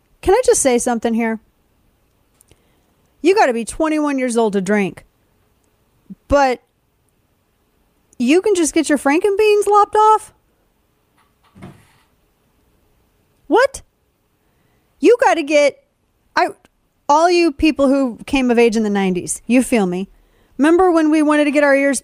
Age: 40-59